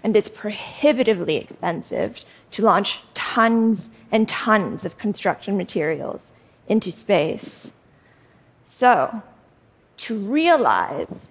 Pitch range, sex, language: 205-245 Hz, female, Korean